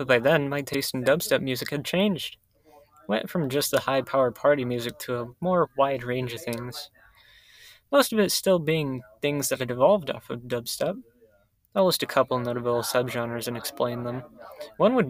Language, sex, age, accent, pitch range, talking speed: English, male, 20-39, American, 120-150 Hz, 185 wpm